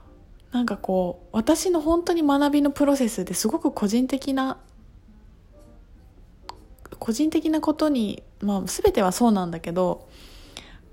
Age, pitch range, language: 20-39, 195-295 Hz, Japanese